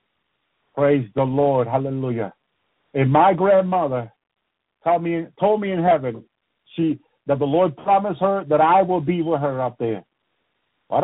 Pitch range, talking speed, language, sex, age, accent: 140-190 Hz, 150 wpm, English, male, 50-69, American